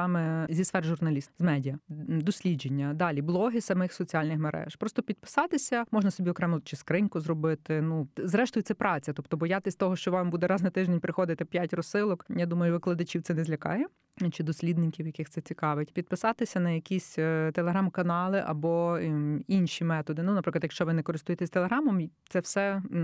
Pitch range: 160-195 Hz